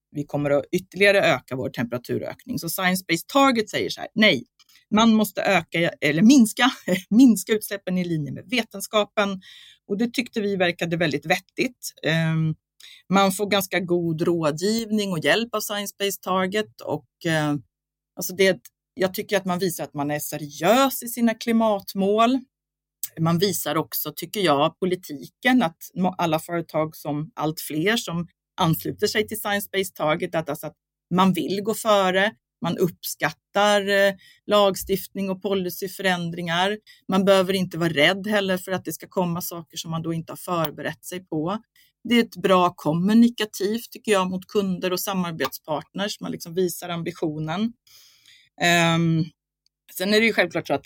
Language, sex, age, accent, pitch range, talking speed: Swedish, female, 30-49, native, 160-205 Hz, 150 wpm